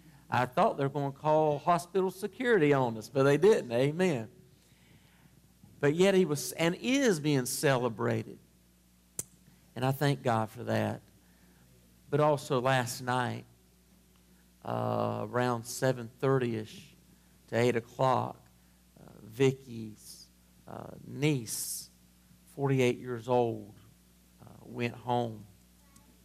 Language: English